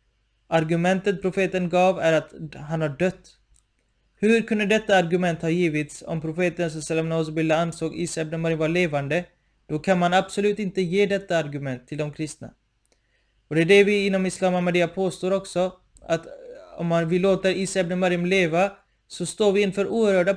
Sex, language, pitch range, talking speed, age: male, Swedish, 160-185 Hz, 170 wpm, 20-39